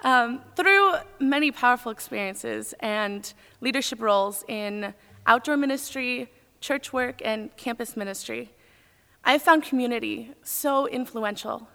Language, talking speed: English, 105 wpm